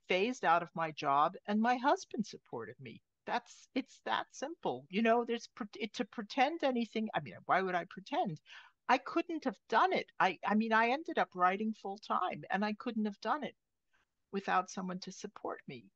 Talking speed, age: 195 wpm, 50-69